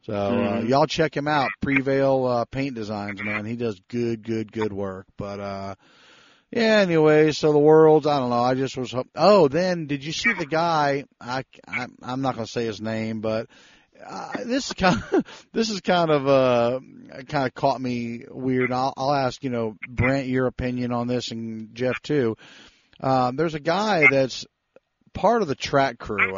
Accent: American